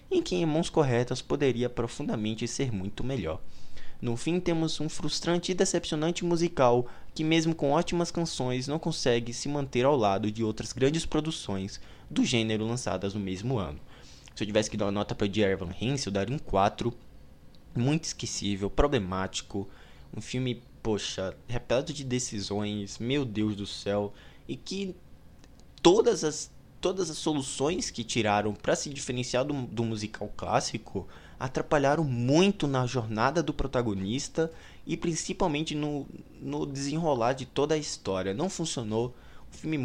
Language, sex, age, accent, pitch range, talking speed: Portuguese, male, 20-39, Brazilian, 105-150 Hz, 155 wpm